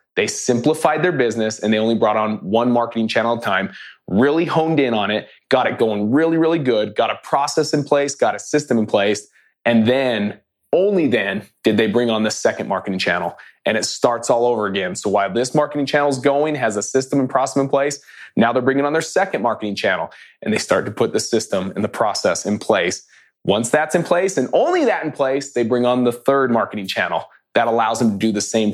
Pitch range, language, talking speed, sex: 120-160 Hz, English, 230 wpm, male